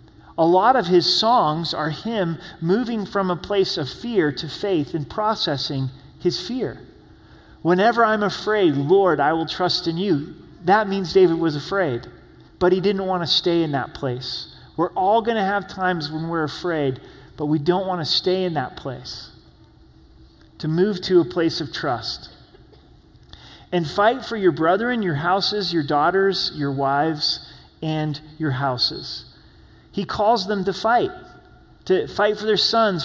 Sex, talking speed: male, 165 wpm